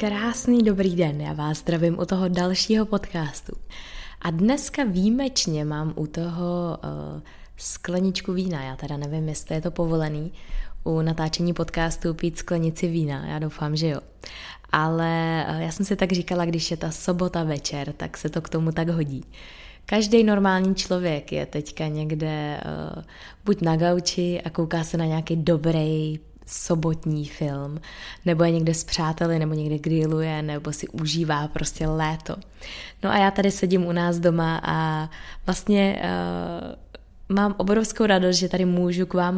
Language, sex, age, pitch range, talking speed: Czech, female, 20-39, 155-180 Hz, 160 wpm